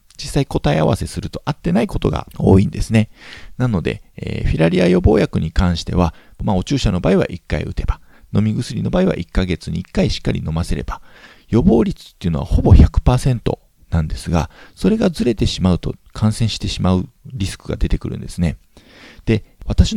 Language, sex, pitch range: Japanese, male, 90-140 Hz